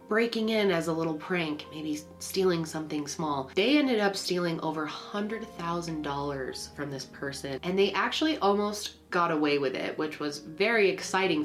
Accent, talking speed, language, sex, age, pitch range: American, 160 wpm, English, female, 20-39, 150-195 Hz